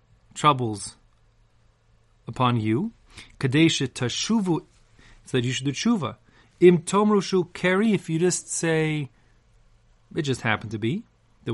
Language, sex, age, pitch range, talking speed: English, male, 30-49, 110-145 Hz, 120 wpm